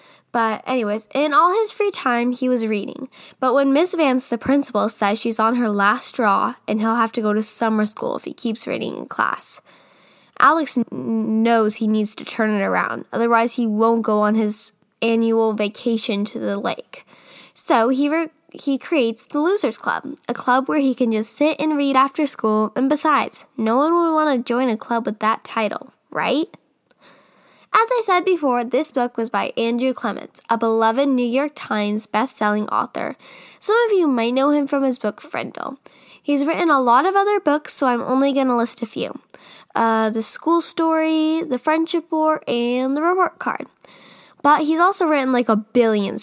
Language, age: English, 10-29